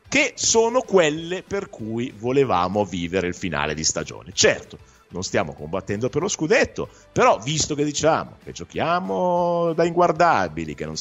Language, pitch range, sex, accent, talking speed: Italian, 105-180 Hz, male, native, 155 wpm